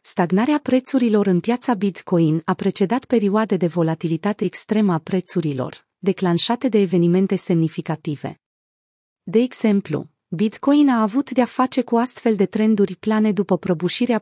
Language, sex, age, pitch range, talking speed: Romanian, female, 30-49, 175-225 Hz, 130 wpm